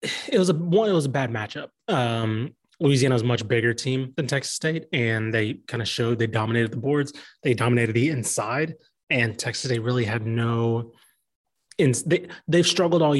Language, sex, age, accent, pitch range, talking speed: English, male, 20-39, American, 115-145 Hz, 195 wpm